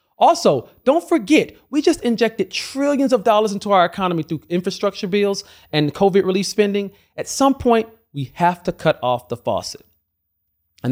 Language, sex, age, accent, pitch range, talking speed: English, male, 40-59, American, 140-230 Hz, 165 wpm